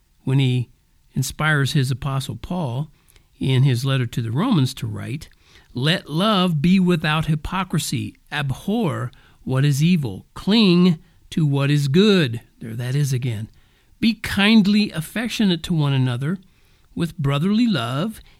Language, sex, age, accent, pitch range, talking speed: English, male, 50-69, American, 140-210 Hz, 135 wpm